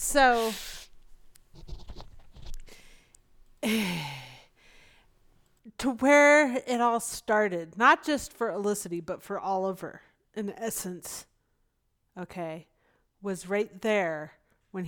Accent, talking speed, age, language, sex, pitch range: American, 80 wpm, 30-49, English, female, 175-230 Hz